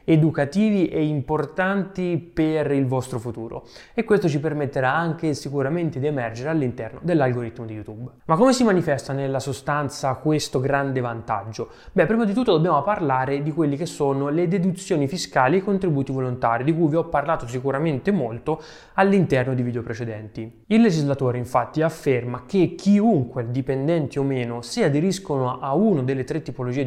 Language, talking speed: Italian, 160 wpm